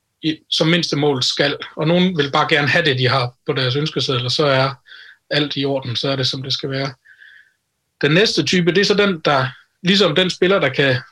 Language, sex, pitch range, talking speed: Danish, male, 135-175 Hz, 225 wpm